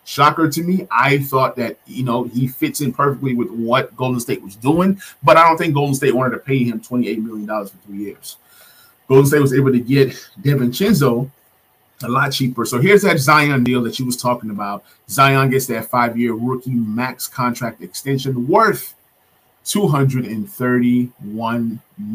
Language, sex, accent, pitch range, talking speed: English, male, American, 120-140 Hz, 175 wpm